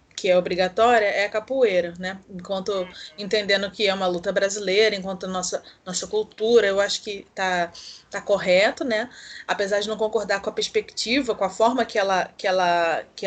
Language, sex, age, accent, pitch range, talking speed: Portuguese, female, 20-39, Brazilian, 190-235 Hz, 175 wpm